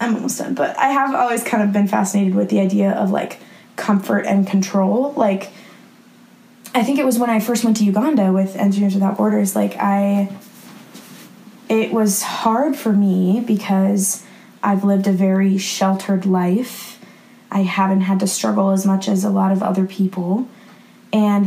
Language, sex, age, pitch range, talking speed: English, female, 10-29, 195-225 Hz, 175 wpm